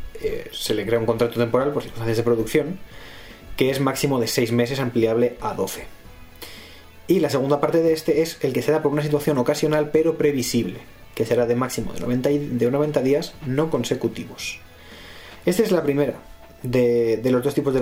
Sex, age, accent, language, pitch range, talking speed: male, 20-39, Spanish, Spanish, 115-150 Hz, 200 wpm